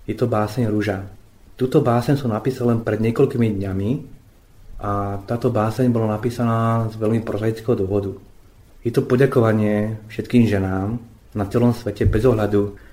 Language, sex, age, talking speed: Slovak, male, 30-49, 145 wpm